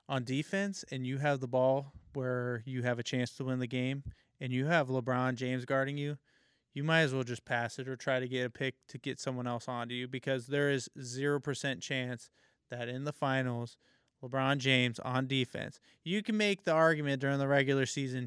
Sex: male